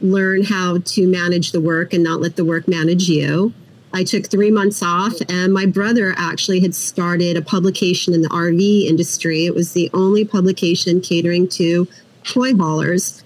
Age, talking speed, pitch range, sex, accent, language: 40-59, 175 wpm, 175-205 Hz, female, American, English